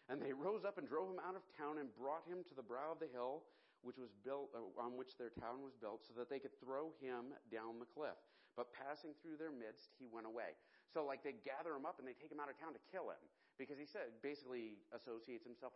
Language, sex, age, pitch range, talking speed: English, male, 40-59, 120-155 Hz, 260 wpm